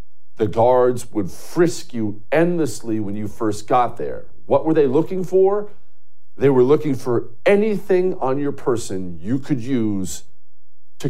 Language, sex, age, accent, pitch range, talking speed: English, male, 50-69, American, 95-145 Hz, 150 wpm